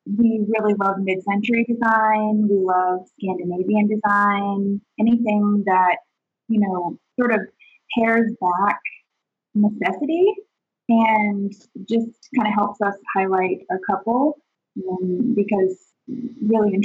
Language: English